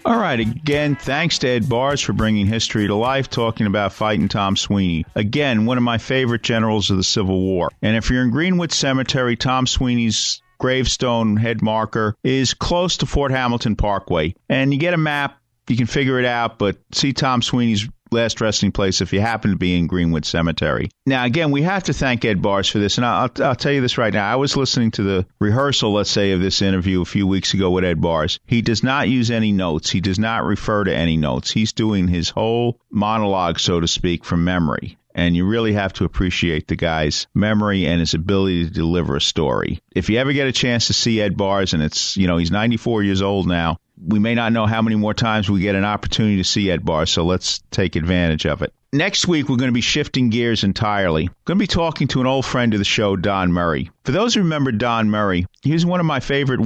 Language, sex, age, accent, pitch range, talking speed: English, male, 50-69, American, 95-125 Hz, 230 wpm